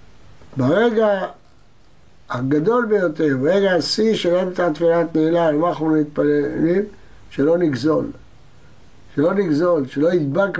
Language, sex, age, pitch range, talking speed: Hebrew, male, 60-79, 150-200 Hz, 95 wpm